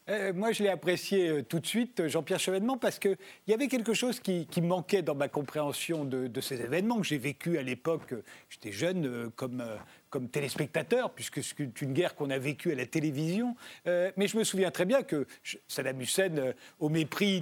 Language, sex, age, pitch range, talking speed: French, male, 40-59, 150-200 Hz, 225 wpm